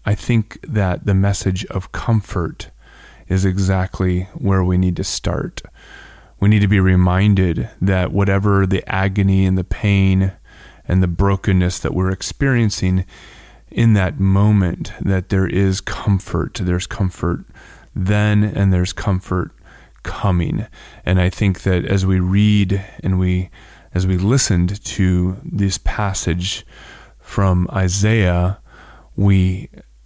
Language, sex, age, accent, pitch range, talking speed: English, male, 20-39, American, 90-100 Hz, 130 wpm